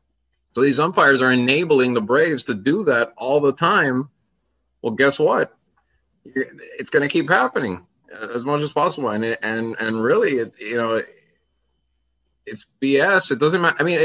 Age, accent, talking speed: 20-39, American, 165 wpm